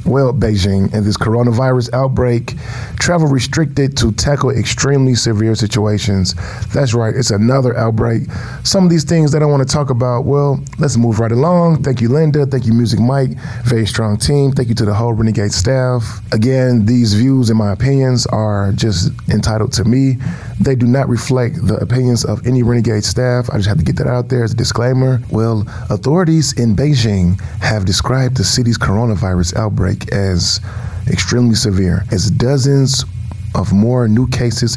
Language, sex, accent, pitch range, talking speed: English, male, American, 105-130 Hz, 175 wpm